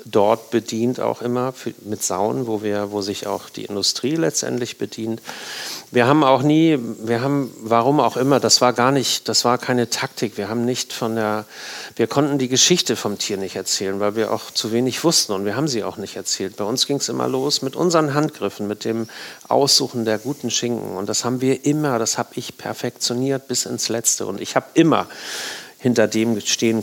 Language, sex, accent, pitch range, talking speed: German, male, German, 110-135 Hz, 205 wpm